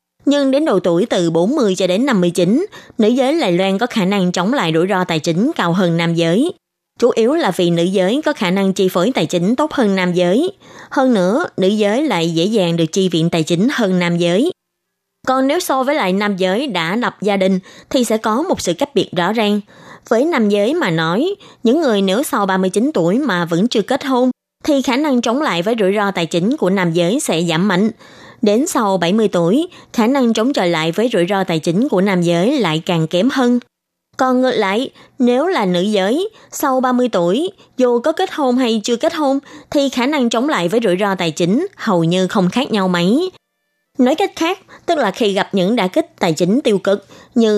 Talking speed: 225 wpm